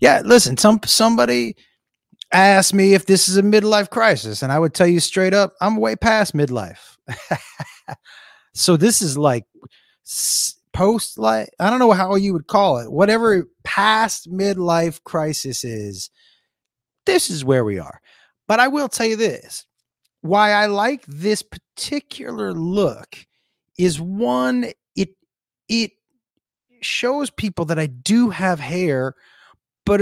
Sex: male